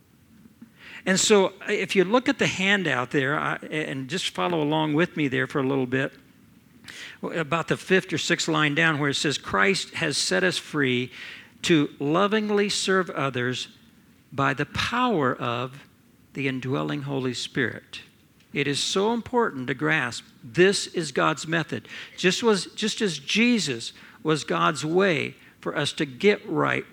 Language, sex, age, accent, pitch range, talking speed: English, male, 60-79, American, 140-200 Hz, 155 wpm